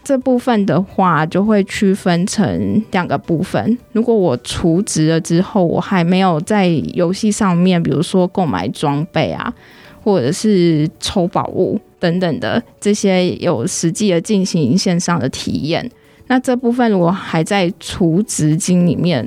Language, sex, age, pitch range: Chinese, female, 20-39, 175-215 Hz